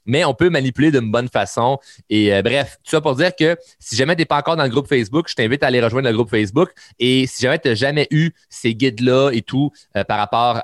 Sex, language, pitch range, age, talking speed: male, French, 105-140 Hz, 30-49, 265 wpm